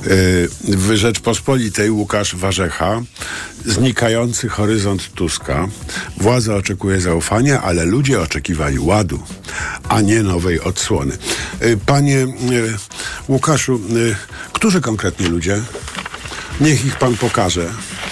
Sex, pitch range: male, 95-125 Hz